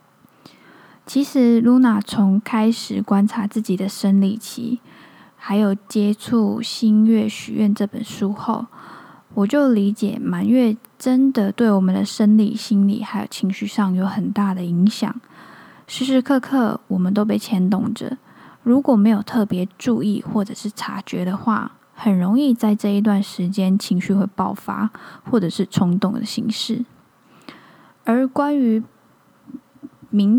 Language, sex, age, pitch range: Chinese, female, 10-29, 200-235 Hz